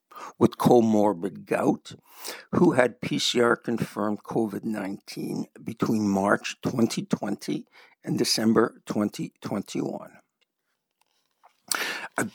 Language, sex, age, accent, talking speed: English, male, 60-79, American, 65 wpm